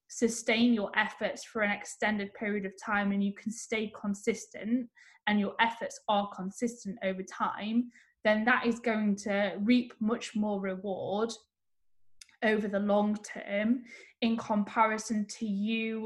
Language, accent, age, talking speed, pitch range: English, British, 10-29, 140 wpm, 205-230 Hz